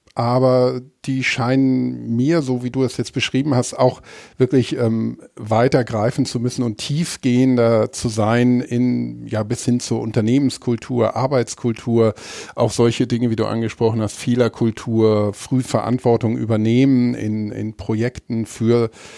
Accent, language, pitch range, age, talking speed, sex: German, German, 110-130 Hz, 50-69, 140 wpm, male